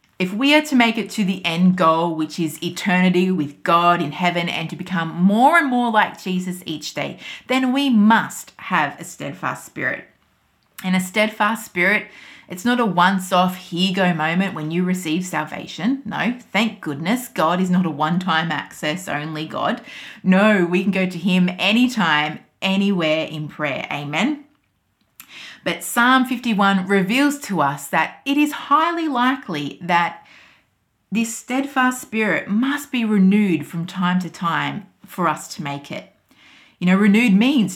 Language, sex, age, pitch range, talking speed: English, female, 30-49, 170-235 Hz, 160 wpm